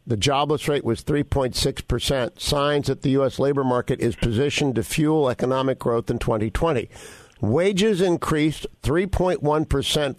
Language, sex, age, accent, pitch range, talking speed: English, male, 50-69, American, 130-155 Hz, 130 wpm